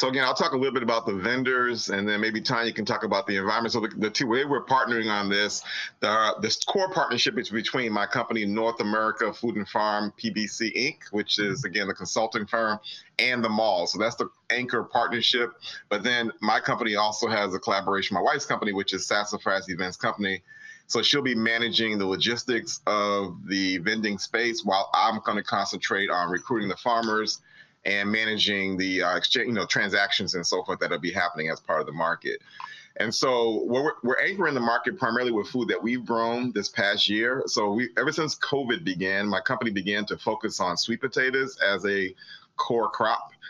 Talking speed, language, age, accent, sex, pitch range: 200 wpm, English, 30-49, American, male, 100-125 Hz